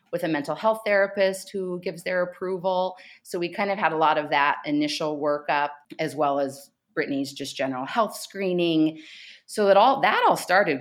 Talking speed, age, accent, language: 190 wpm, 30-49, American, English